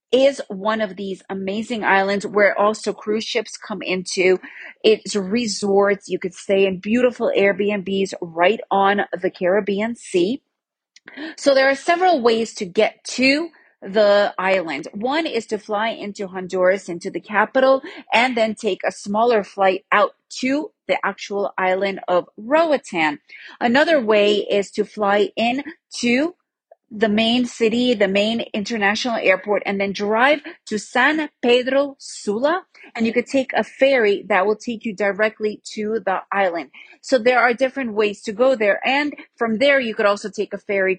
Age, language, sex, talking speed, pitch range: 30-49, English, female, 160 wpm, 200-265 Hz